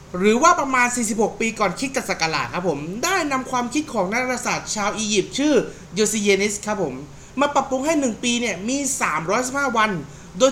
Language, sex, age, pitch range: Thai, male, 20-39, 185-260 Hz